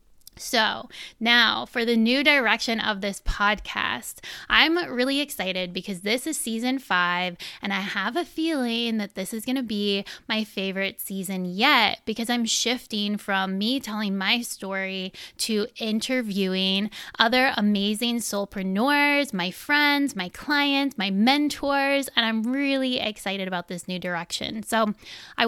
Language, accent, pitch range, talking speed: English, American, 195-240 Hz, 145 wpm